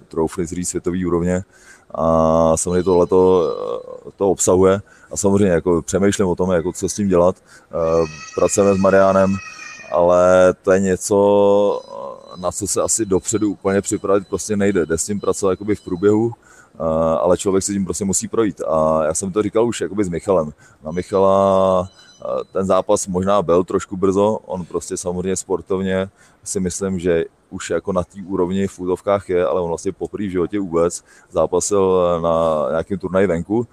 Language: Czech